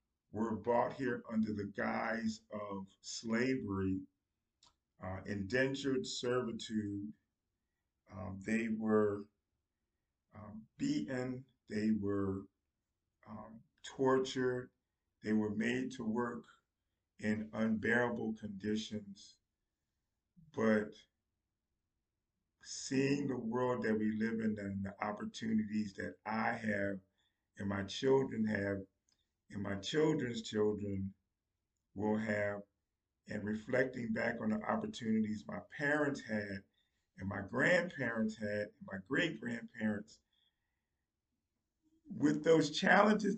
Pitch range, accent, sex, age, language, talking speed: 100-130 Hz, American, male, 40-59, English, 100 wpm